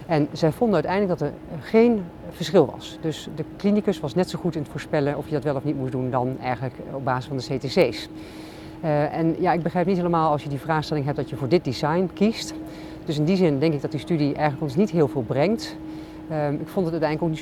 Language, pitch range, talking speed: Dutch, 135-165 Hz, 255 wpm